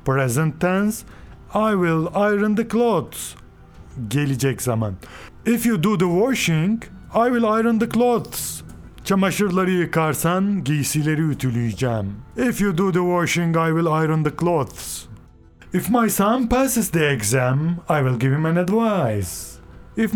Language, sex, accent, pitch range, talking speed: Turkish, male, native, 135-190 Hz, 135 wpm